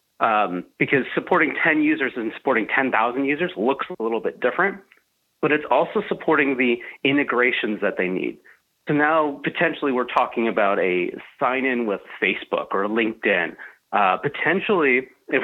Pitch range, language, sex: 115-165 Hz, English, male